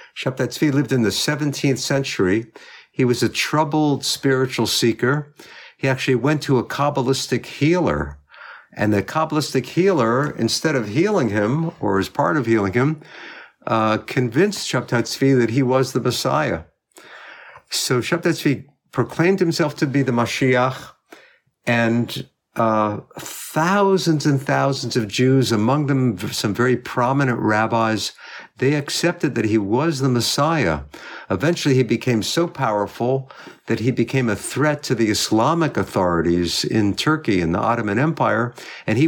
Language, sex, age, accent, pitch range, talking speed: English, male, 50-69, American, 115-145 Hz, 140 wpm